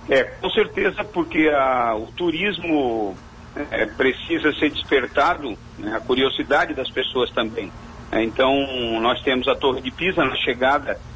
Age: 50-69